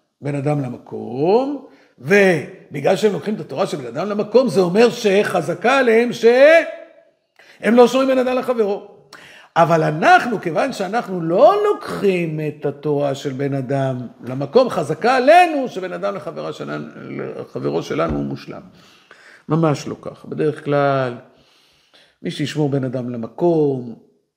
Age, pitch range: 50-69, 150-240 Hz